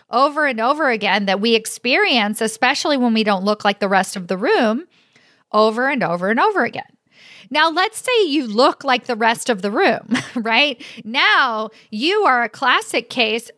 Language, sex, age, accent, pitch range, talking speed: English, female, 40-59, American, 225-295 Hz, 185 wpm